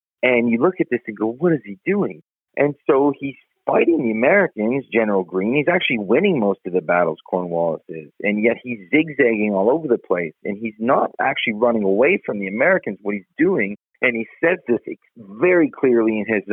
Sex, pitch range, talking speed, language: male, 95-120 Hz, 205 wpm, English